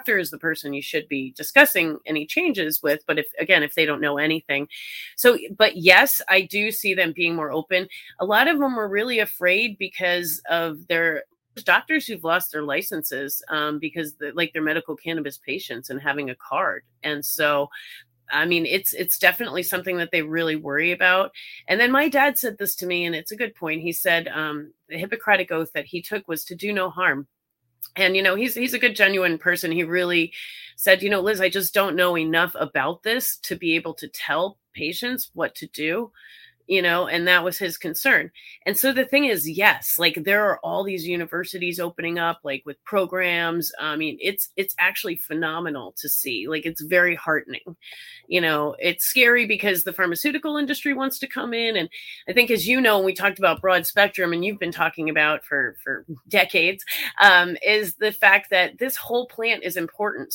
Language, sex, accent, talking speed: English, female, American, 200 wpm